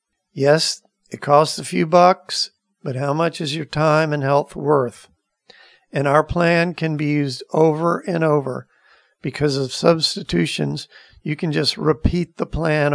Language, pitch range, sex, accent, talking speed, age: English, 140-165 Hz, male, American, 155 wpm, 50-69